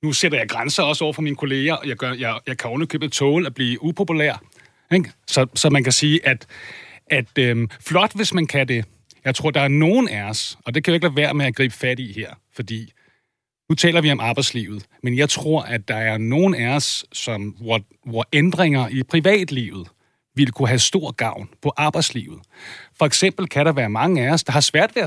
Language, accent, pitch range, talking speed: Danish, native, 120-155 Hz, 225 wpm